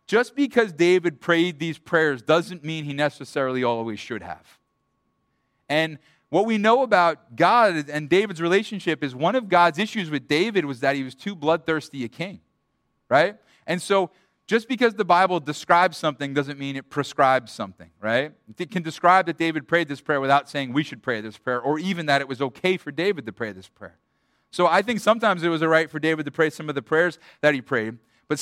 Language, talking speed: English, 210 wpm